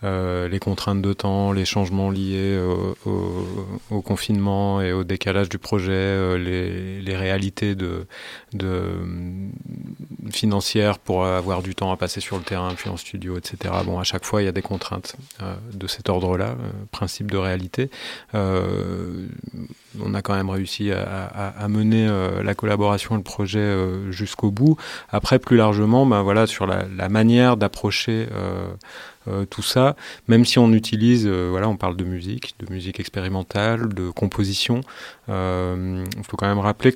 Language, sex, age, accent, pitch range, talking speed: French, male, 30-49, French, 95-110 Hz, 180 wpm